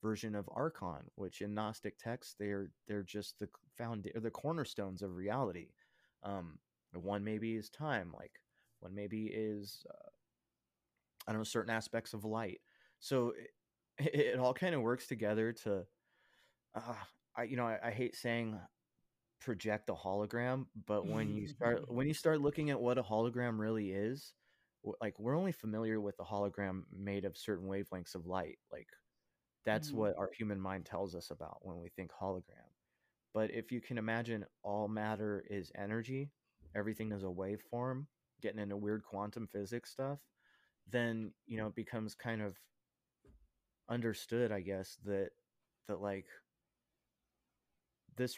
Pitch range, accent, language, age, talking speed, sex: 100-120 Hz, American, English, 20-39, 160 wpm, male